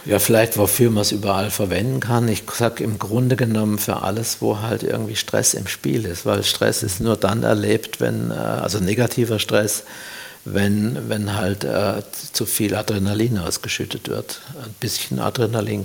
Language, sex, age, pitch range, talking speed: German, male, 60-79, 100-115 Hz, 165 wpm